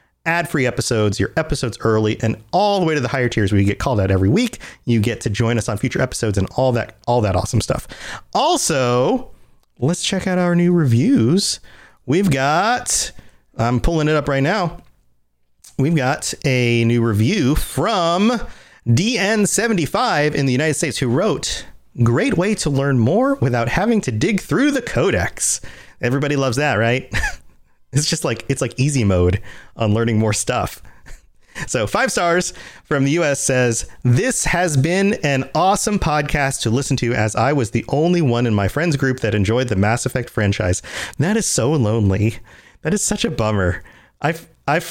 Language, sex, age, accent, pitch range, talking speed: English, male, 30-49, American, 115-160 Hz, 180 wpm